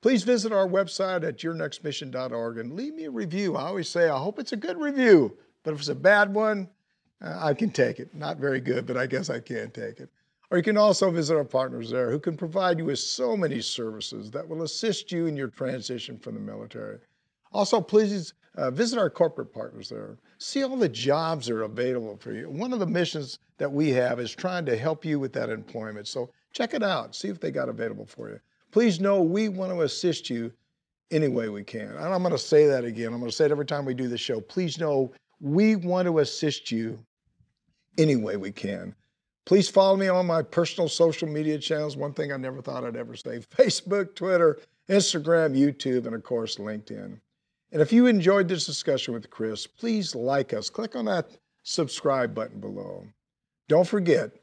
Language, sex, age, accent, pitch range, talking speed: English, male, 50-69, American, 130-190 Hz, 210 wpm